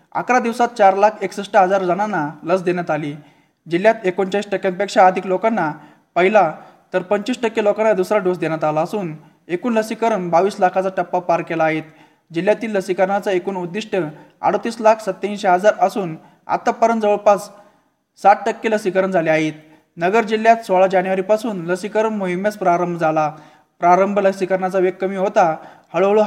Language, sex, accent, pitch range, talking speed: Marathi, male, native, 175-210 Hz, 125 wpm